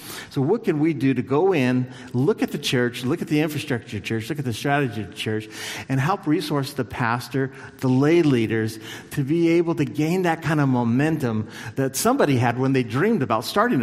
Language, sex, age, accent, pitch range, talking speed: English, male, 50-69, American, 120-145 Hz, 215 wpm